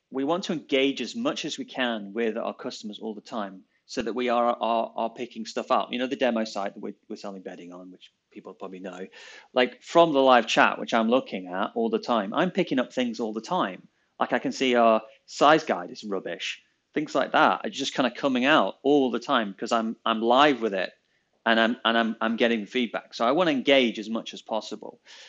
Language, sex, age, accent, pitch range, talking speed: English, male, 30-49, British, 110-140 Hz, 240 wpm